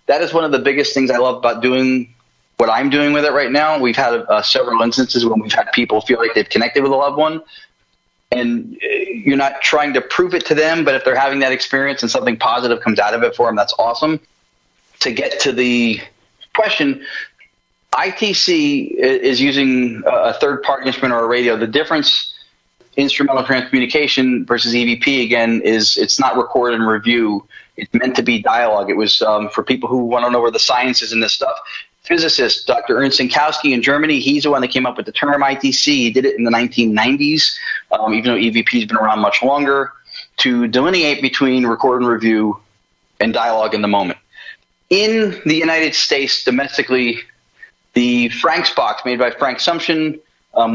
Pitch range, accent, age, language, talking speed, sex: 120-150 Hz, American, 30-49, English, 195 wpm, male